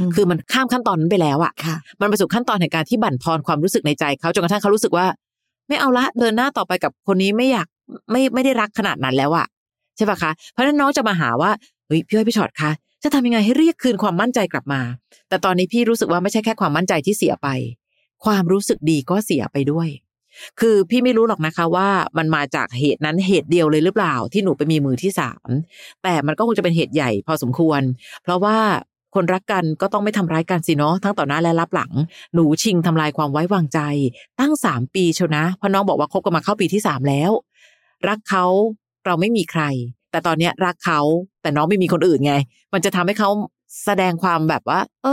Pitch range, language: 155-215 Hz, Thai